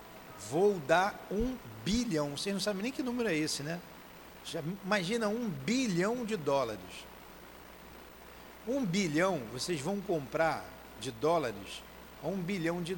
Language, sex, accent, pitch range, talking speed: Portuguese, male, Brazilian, 150-220 Hz, 130 wpm